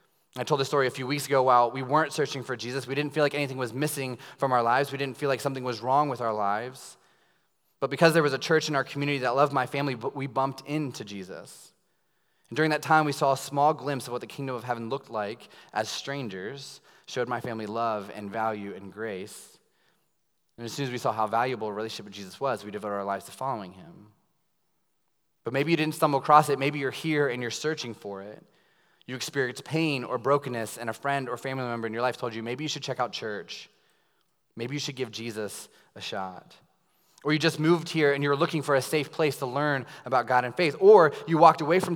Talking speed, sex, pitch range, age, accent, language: 235 wpm, male, 115-145 Hz, 20-39, American, English